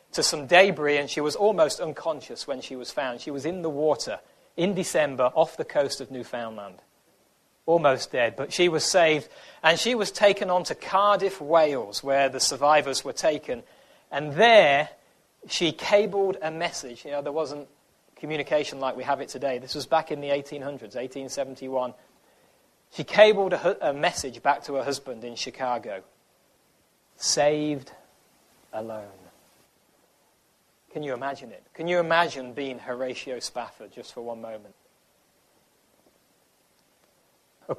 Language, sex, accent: English, male, British